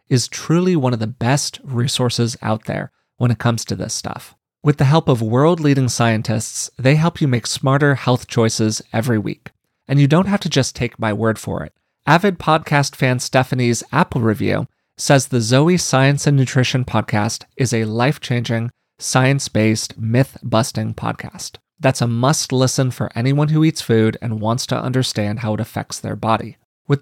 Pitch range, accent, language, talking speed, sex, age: 110-140 Hz, American, English, 175 wpm, male, 30-49